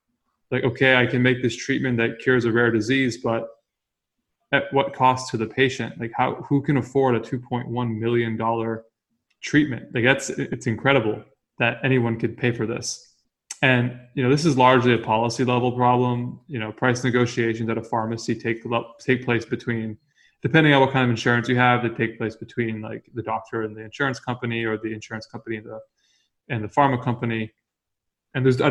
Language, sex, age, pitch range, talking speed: English, male, 20-39, 115-130 Hz, 190 wpm